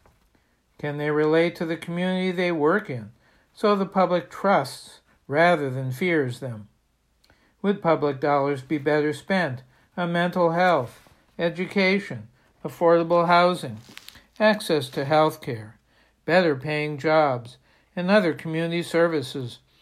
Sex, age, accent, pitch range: male, 60-79, American, 140-175 Hz